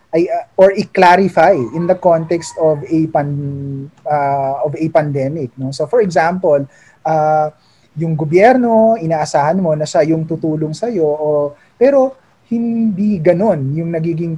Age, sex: 20-39, male